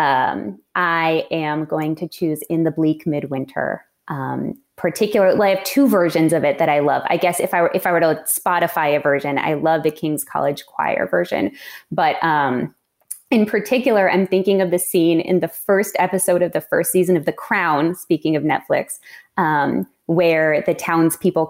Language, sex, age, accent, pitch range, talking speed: English, female, 20-39, American, 145-175 Hz, 185 wpm